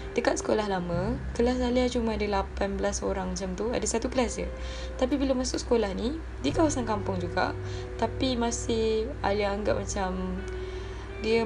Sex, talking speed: female, 155 wpm